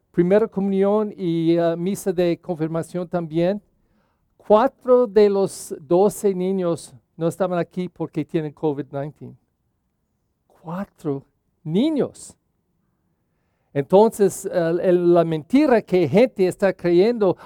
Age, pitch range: 50-69, 160-210 Hz